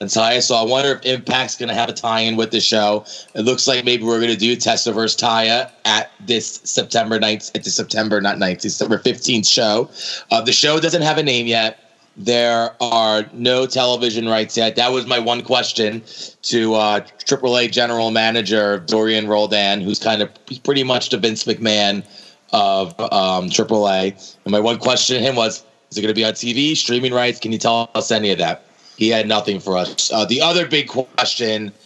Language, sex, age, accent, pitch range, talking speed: English, male, 30-49, American, 105-120 Hz, 200 wpm